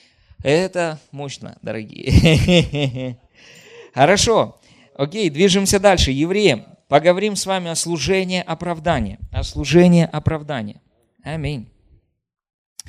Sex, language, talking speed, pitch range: male, Russian, 85 wpm, 130-195 Hz